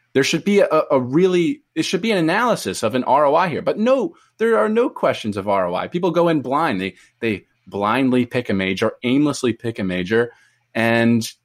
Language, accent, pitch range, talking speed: English, American, 115-175 Hz, 200 wpm